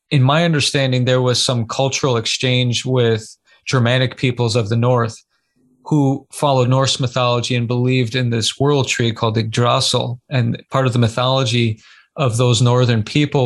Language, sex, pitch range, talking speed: English, male, 120-135 Hz, 155 wpm